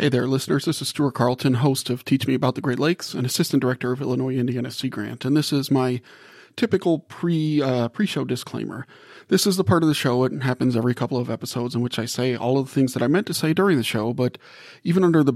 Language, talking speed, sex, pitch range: English, 250 wpm, male, 120-145 Hz